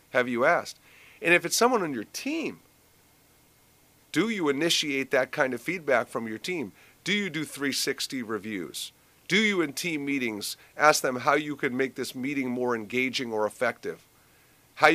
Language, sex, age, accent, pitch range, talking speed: English, male, 50-69, American, 130-180 Hz, 175 wpm